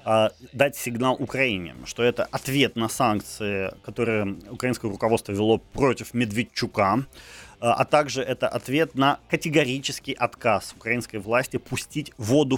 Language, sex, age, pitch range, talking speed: Ukrainian, male, 30-49, 110-140 Hz, 120 wpm